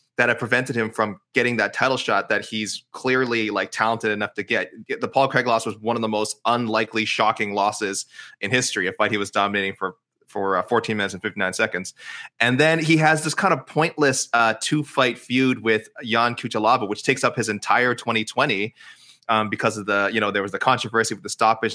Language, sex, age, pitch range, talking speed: English, male, 20-39, 105-125 Hz, 210 wpm